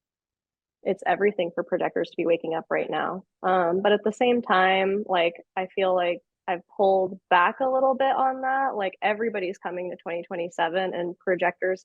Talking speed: 175 wpm